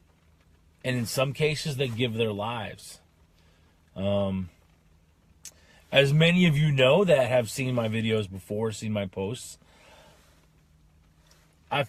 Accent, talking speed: American, 120 wpm